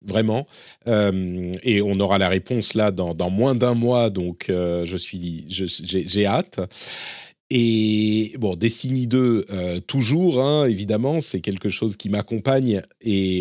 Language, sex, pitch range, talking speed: French, male, 95-130 Hz, 155 wpm